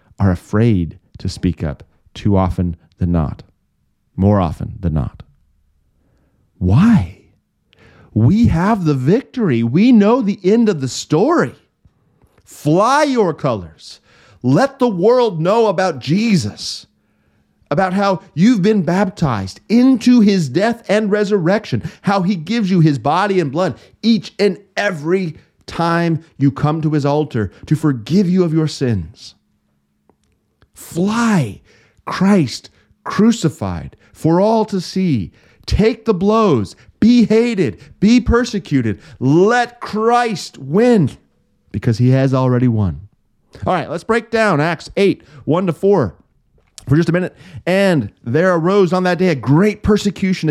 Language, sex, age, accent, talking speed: English, male, 40-59, American, 130 wpm